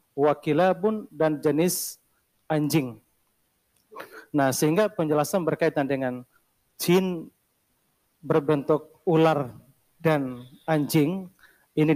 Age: 40-59